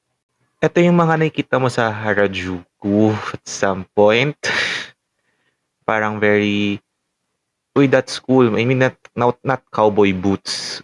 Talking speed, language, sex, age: 120 wpm, English, male, 20-39